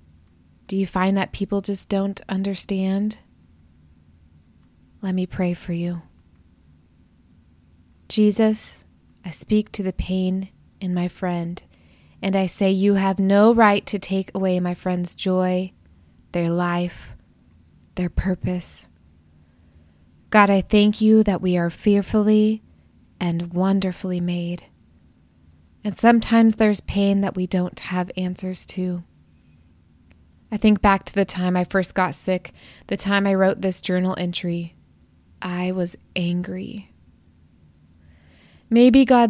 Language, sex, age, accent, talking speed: English, female, 20-39, American, 125 wpm